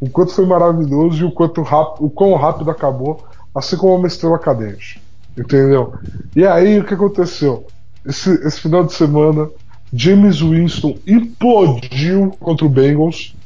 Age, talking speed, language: 20-39, 145 wpm, Portuguese